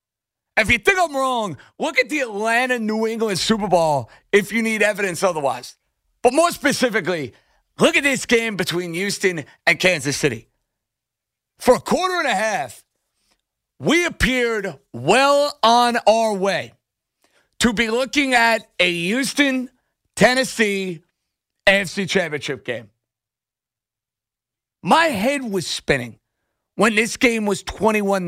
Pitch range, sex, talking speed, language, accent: 170-235 Hz, male, 125 wpm, English, American